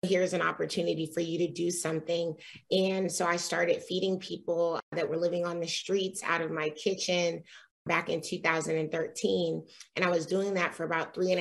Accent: American